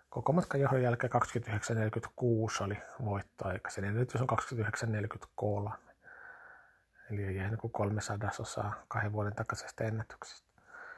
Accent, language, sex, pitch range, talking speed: native, Finnish, male, 110-135 Hz, 120 wpm